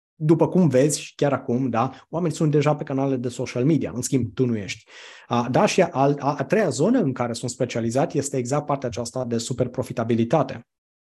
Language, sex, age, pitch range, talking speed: Romanian, male, 20-39, 120-145 Hz, 200 wpm